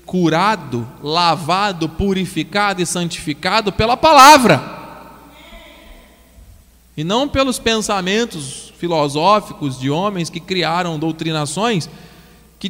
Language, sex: Portuguese, male